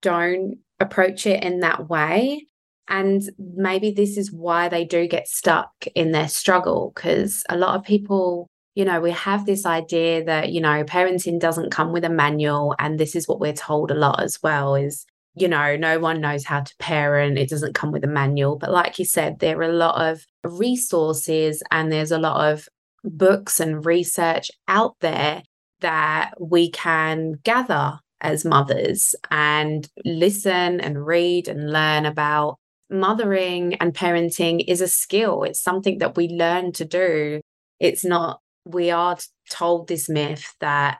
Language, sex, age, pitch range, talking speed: English, female, 20-39, 155-185 Hz, 170 wpm